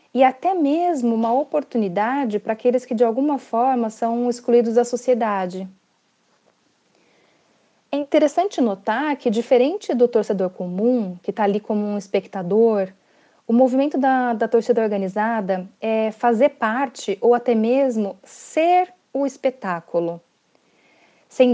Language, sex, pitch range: Portuguese, female, 205-255 Hz